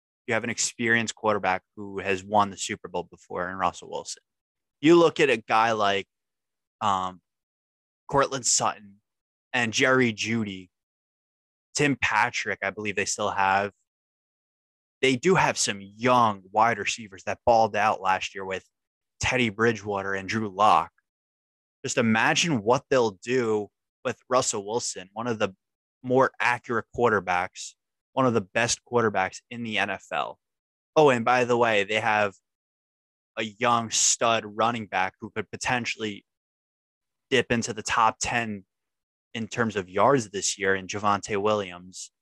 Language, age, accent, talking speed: English, 20-39, American, 145 wpm